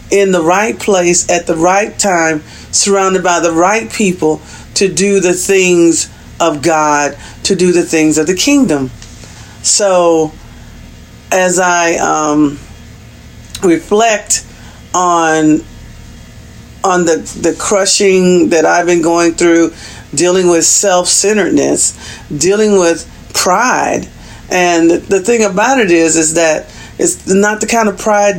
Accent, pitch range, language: American, 155-190 Hz, English